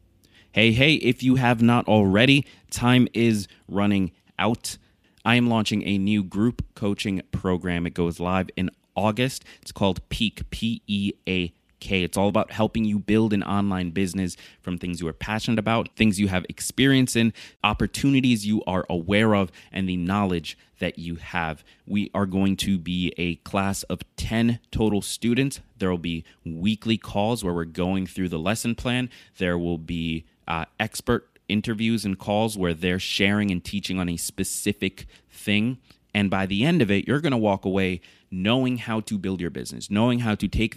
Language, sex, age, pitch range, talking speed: English, male, 20-39, 90-110 Hz, 175 wpm